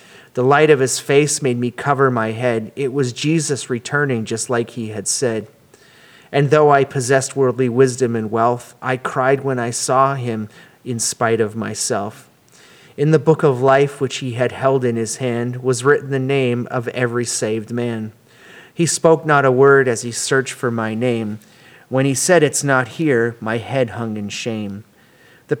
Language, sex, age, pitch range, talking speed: English, male, 30-49, 120-140 Hz, 190 wpm